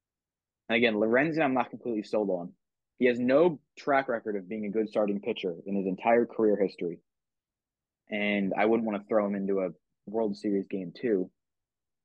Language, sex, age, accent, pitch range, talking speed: English, male, 20-39, American, 100-120 Hz, 185 wpm